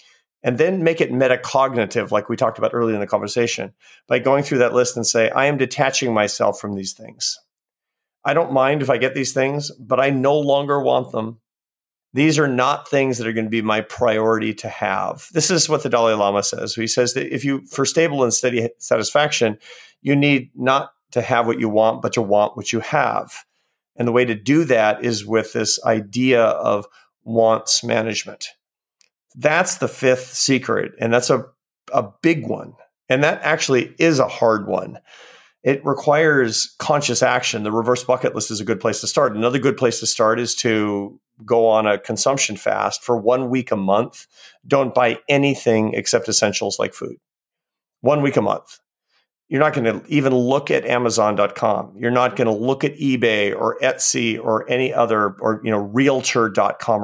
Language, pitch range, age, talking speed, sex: English, 110-135 Hz, 40-59, 190 wpm, male